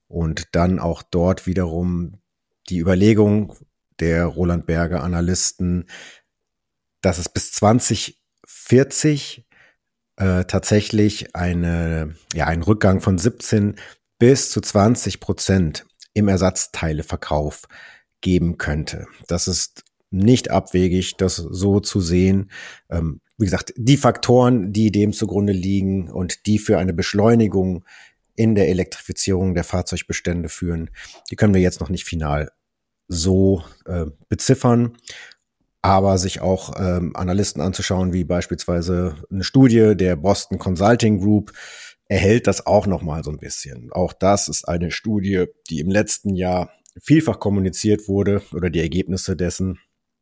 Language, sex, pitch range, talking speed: German, male, 85-105 Hz, 125 wpm